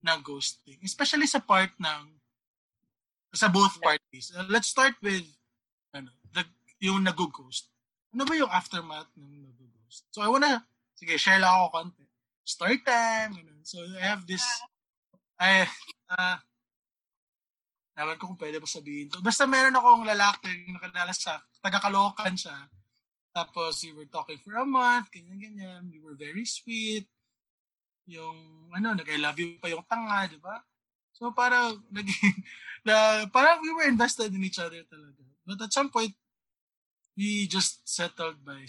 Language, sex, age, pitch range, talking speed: Filipino, male, 20-39, 155-225 Hz, 150 wpm